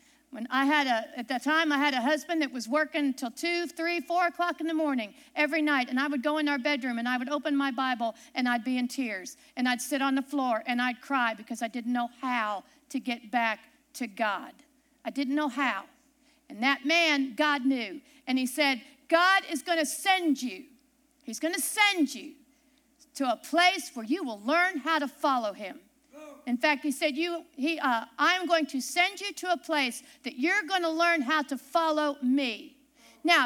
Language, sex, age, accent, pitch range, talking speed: English, female, 50-69, American, 270-330 Hz, 210 wpm